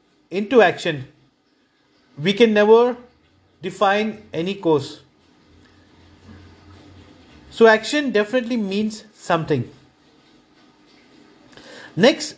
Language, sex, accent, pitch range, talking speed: English, male, Indian, 170-220 Hz, 70 wpm